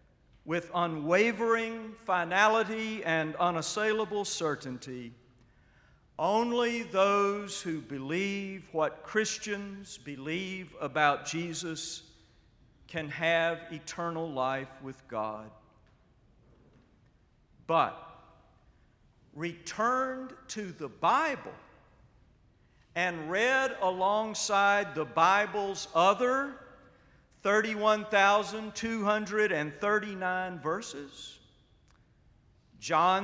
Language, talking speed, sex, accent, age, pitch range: English, 65 wpm, male, American, 50-69, 150-205 Hz